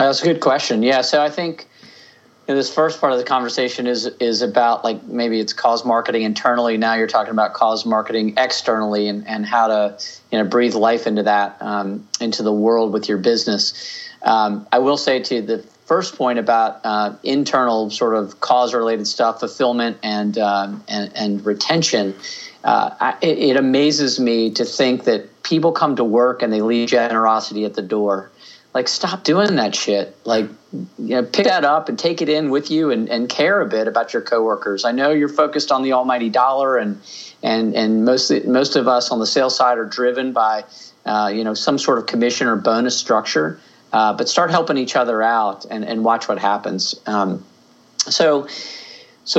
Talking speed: 195 wpm